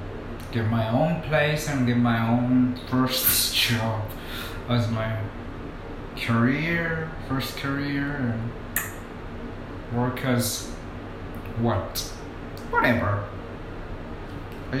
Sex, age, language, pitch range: male, 30-49, Japanese, 95-125 Hz